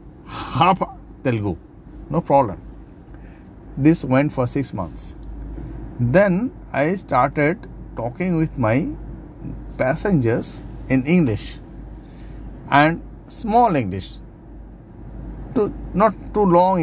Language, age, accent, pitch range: English, 50-69, Indian, 130-185 Hz